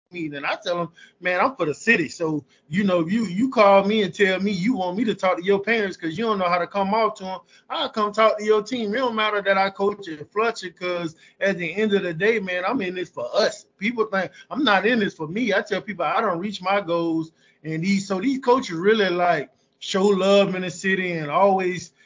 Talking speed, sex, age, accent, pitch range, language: 260 wpm, male, 20-39, American, 175-210 Hz, English